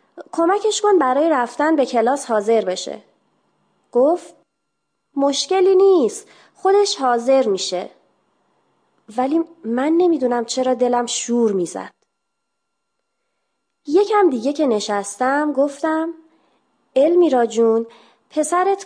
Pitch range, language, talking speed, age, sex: 240-345 Hz, Persian, 90 wpm, 30-49, female